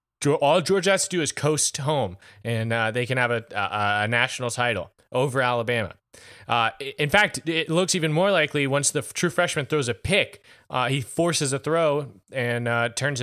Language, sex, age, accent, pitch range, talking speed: English, male, 20-39, American, 125-160 Hz, 195 wpm